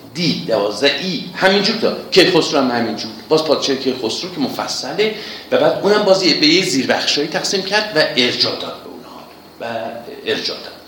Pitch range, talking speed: 130-205 Hz, 155 wpm